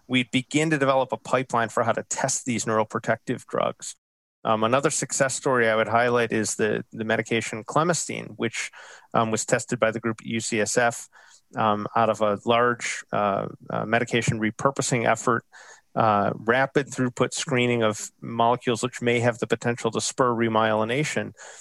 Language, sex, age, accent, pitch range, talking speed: English, male, 40-59, American, 110-130 Hz, 160 wpm